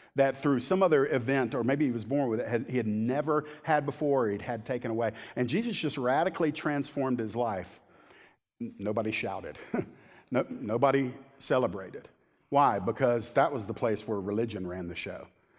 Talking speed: 175 wpm